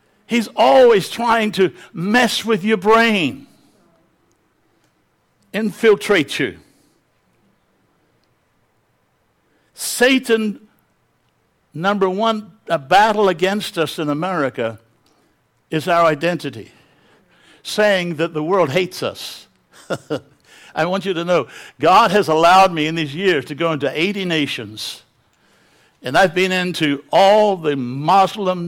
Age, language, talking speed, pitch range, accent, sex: 60-79, English, 105 wpm, 155-205 Hz, American, male